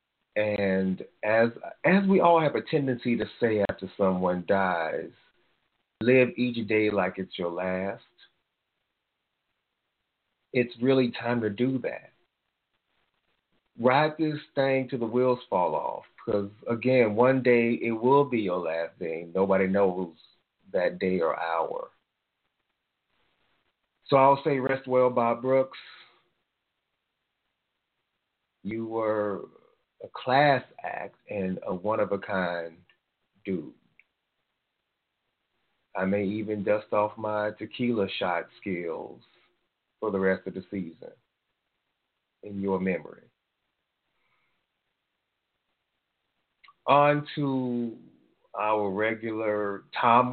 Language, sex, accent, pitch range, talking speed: English, male, American, 100-125 Hz, 110 wpm